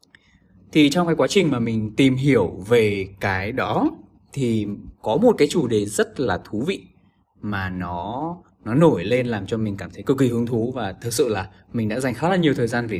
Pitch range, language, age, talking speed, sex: 95-135 Hz, Vietnamese, 20-39, 225 wpm, male